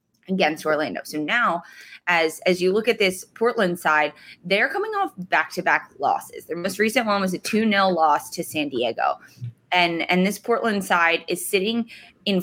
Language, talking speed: English, 175 wpm